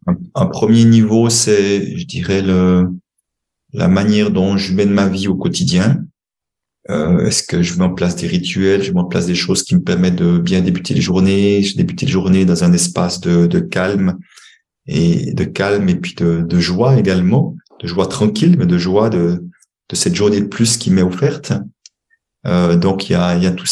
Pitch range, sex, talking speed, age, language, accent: 90-110 Hz, male, 205 wpm, 30-49, French, French